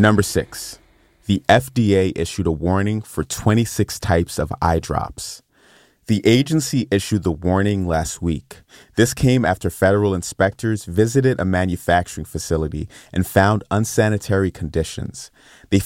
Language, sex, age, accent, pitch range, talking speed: English, male, 30-49, American, 85-110 Hz, 130 wpm